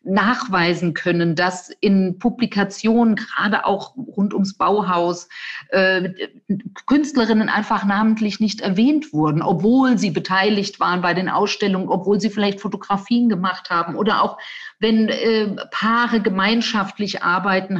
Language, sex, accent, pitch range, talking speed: German, female, German, 175-220 Hz, 120 wpm